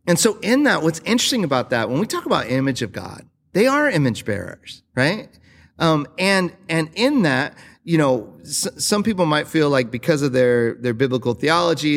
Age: 40-59